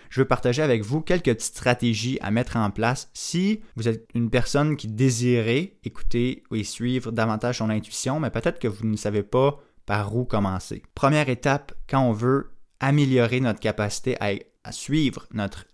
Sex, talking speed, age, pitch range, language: male, 180 wpm, 20-39, 110-135 Hz, French